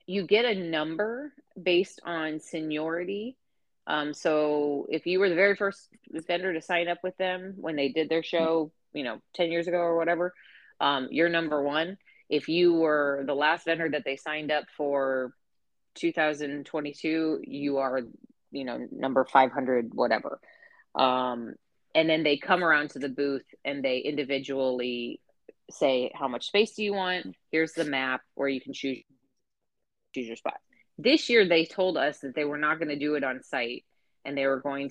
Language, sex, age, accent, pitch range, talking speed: English, female, 30-49, American, 135-170 Hz, 180 wpm